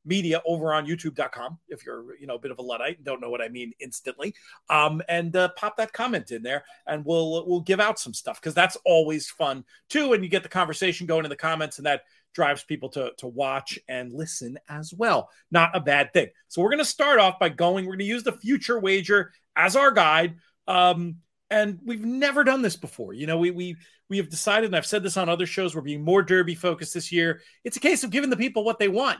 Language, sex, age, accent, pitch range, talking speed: English, male, 40-59, American, 155-210 Hz, 245 wpm